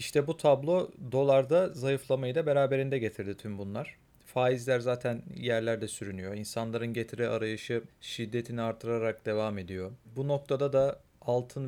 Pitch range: 110-135 Hz